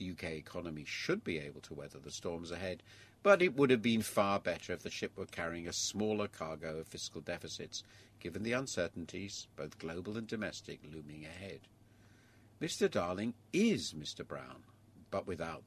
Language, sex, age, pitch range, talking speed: English, male, 50-69, 90-120 Hz, 170 wpm